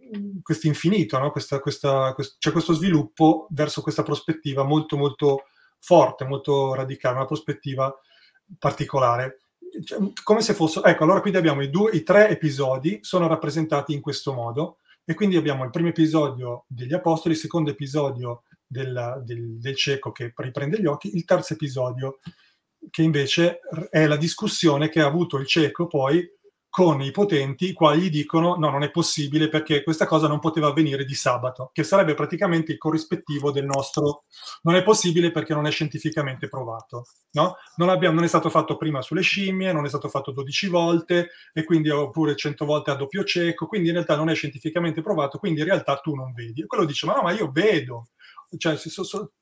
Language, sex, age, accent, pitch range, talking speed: Italian, male, 30-49, native, 140-170 Hz, 180 wpm